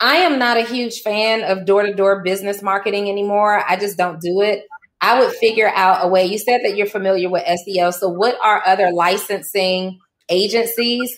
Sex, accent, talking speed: female, American, 190 wpm